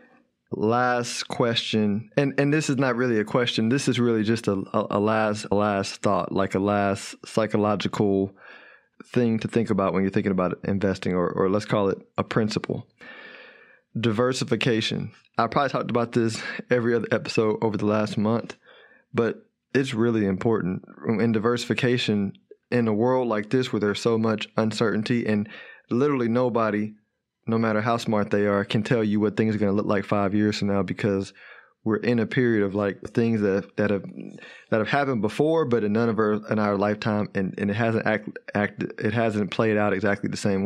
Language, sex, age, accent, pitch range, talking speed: English, male, 20-39, American, 100-115 Hz, 190 wpm